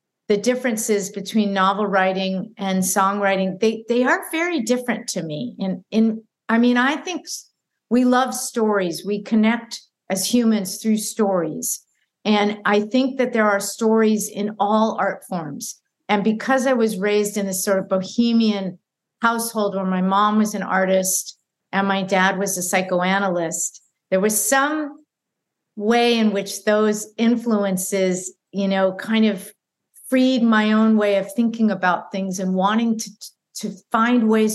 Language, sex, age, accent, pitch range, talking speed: English, female, 50-69, American, 195-230 Hz, 155 wpm